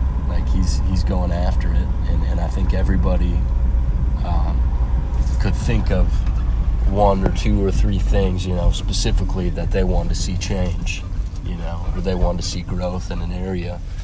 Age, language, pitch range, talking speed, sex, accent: 30-49, English, 85-95 Hz, 165 wpm, male, American